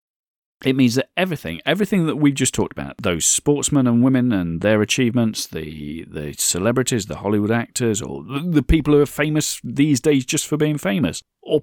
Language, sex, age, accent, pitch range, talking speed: English, male, 40-59, British, 95-150 Hz, 185 wpm